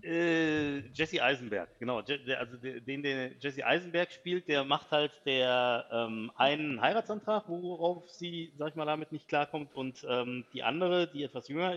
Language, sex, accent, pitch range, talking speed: German, male, German, 125-155 Hz, 155 wpm